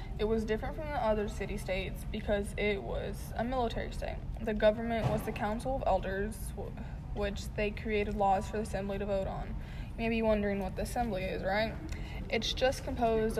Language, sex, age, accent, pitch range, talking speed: English, female, 20-39, American, 200-220 Hz, 190 wpm